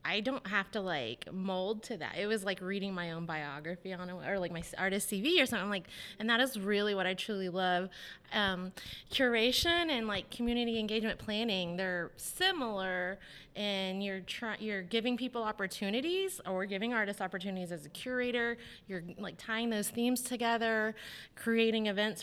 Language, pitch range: English, 190-230 Hz